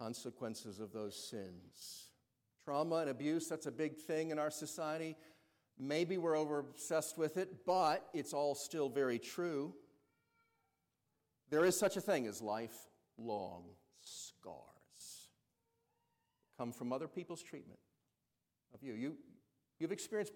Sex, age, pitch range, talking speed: male, 50-69, 115-160 Hz, 130 wpm